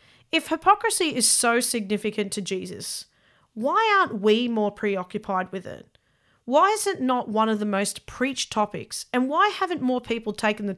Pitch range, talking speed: 210-275 Hz, 175 wpm